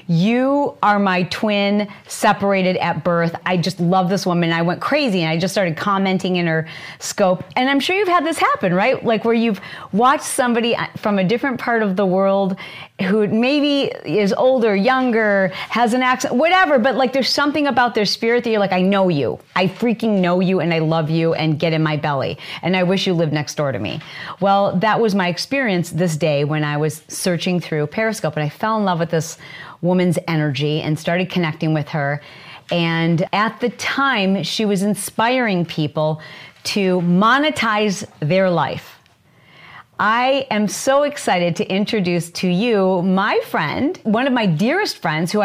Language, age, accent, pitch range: English, 30-49, American, 170-230 Hz